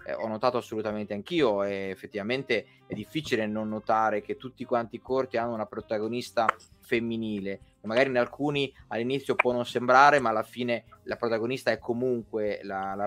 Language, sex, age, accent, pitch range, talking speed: Italian, male, 20-39, native, 115-140 Hz, 165 wpm